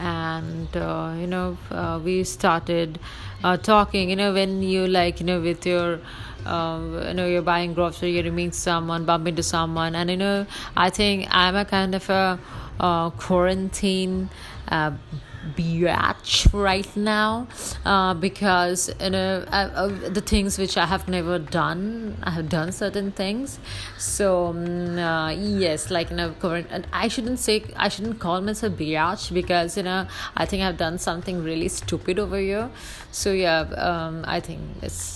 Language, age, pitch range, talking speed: English, 30-49, 170-195 Hz, 170 wpm